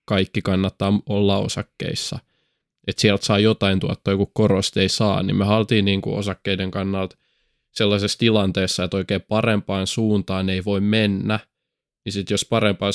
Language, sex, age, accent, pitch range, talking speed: Finnish, male, 20-39, native, 95-105 Hz, 155 wpm